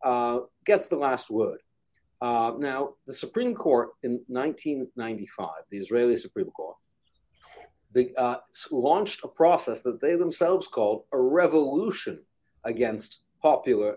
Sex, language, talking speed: male, English, 120 wpm